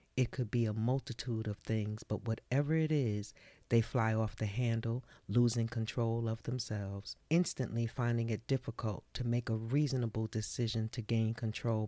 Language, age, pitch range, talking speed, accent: English, 40-59, 110-135 Hz, 160 wpm, American